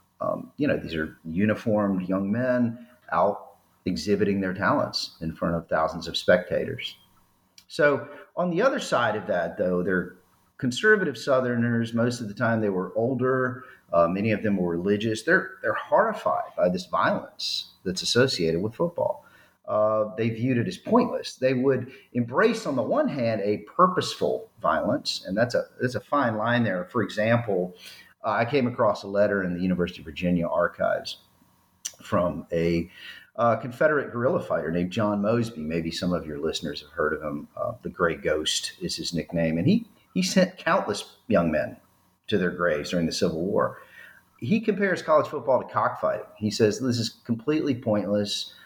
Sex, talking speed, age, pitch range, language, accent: male, 175 wpm, 50-69, 95-125 Hz, English, American